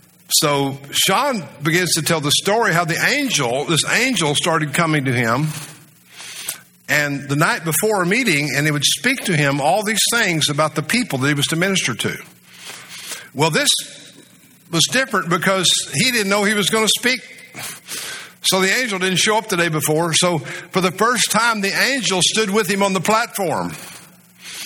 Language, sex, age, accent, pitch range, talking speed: English, male, 60-79, American, 155-210 Hz, 185 wpm